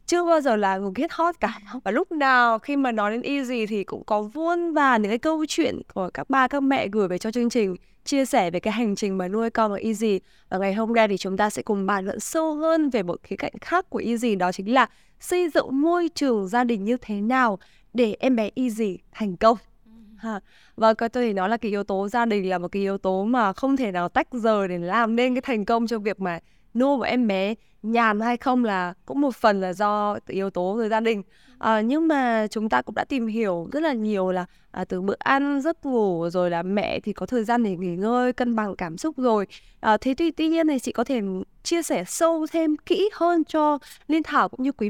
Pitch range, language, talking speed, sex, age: 205-265 Hz, Vietnamese, 250 wpm, female, 20-39